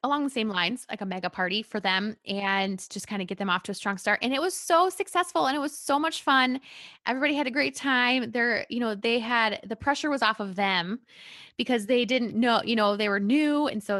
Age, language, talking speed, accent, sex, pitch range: 20-39, English, 255 wpm, American, female, 200-255 Hz